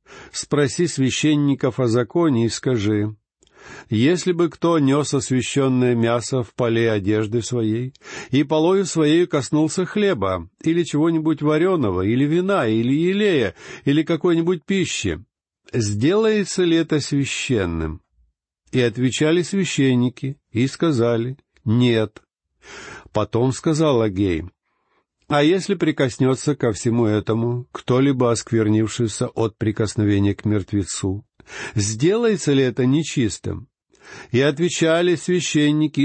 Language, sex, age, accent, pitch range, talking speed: Russian, male, 50-69, native, 110-155 Hz, 105 wpm